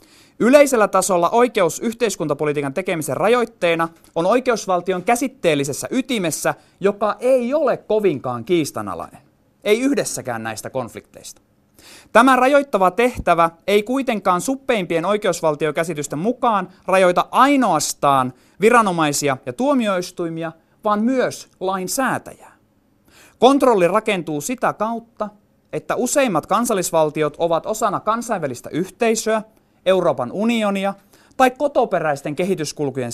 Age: 30-49